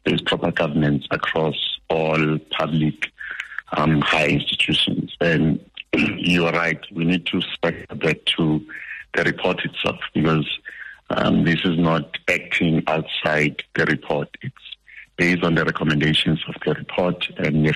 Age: 60-79